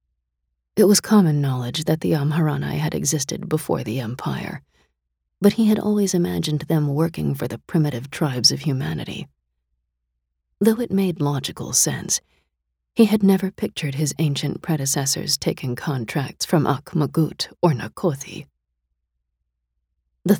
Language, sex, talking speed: English, female, 130 wpm